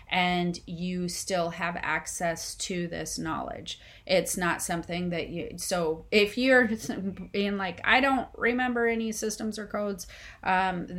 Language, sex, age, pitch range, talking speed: English, female, 30-49, 170-190 Hz, 140 wpm